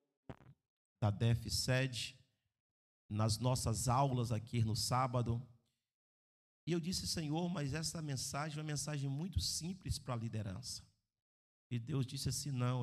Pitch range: 120-145 Hz